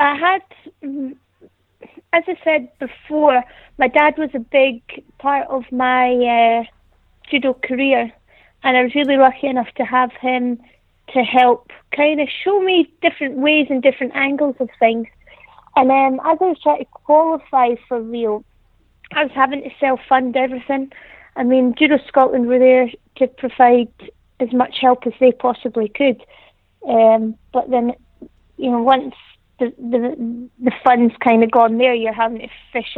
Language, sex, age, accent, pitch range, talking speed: English, female, 30-49, British, 235-275 Hz, 160 wpm